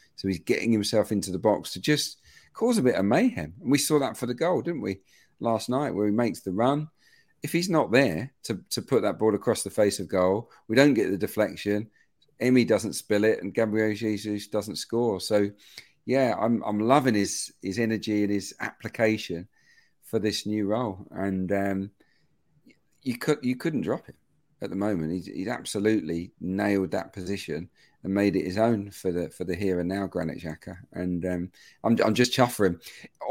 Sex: male